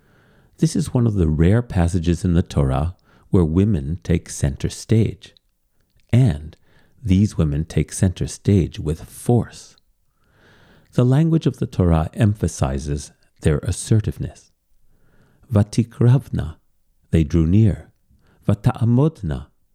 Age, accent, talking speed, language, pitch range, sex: 50-69, American, 110 wpm, English, 80-110 Hz, male